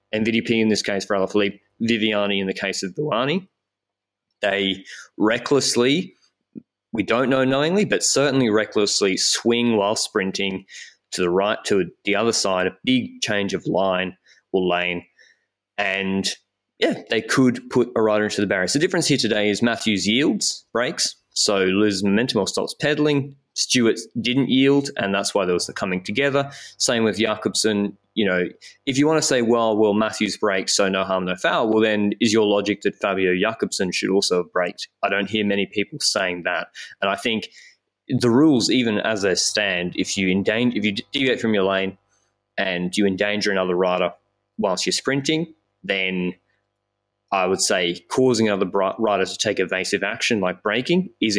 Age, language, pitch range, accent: 20-39, English, 95-115 Hz, Australian